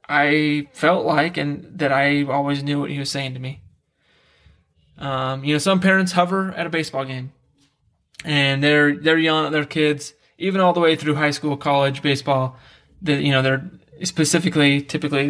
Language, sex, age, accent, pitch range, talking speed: English, male, 20-39, American, 130-150 Hz, 180 wpm